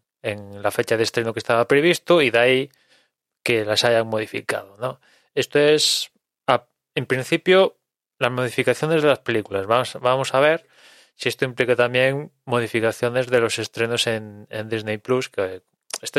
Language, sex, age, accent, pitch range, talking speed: English, male, 20-39, Spanish, 110-135 Hz, 165 wpm